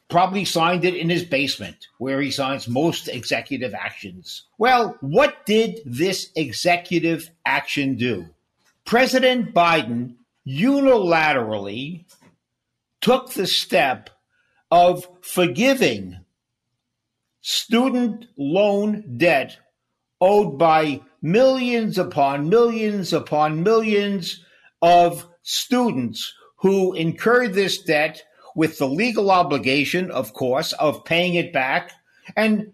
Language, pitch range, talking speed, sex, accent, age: English, 140-205 Hz, 100 wpm, male, American, 50-69